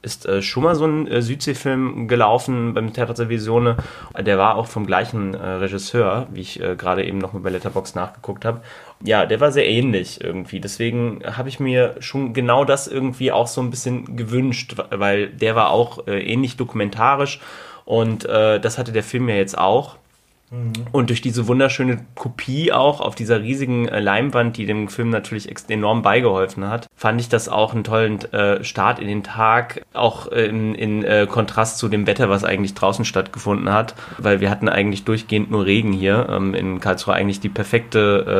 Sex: male